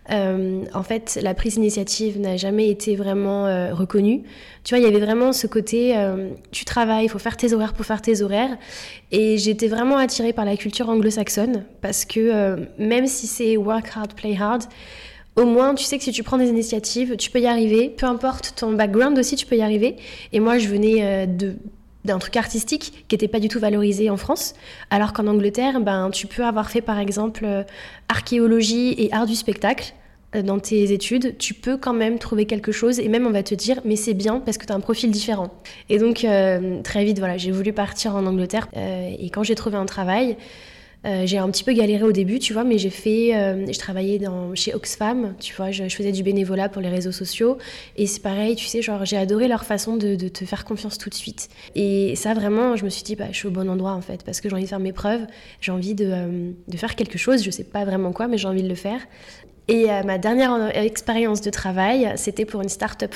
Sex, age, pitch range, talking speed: female, 20-39, 195-230 Hz, 240 wpm